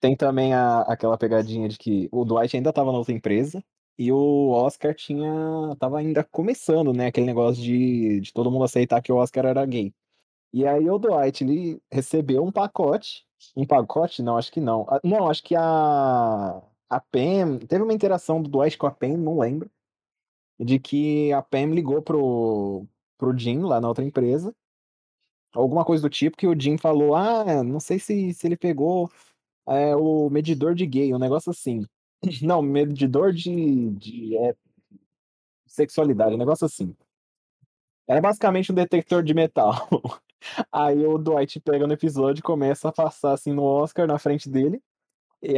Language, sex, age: Portuguese, male, 20-39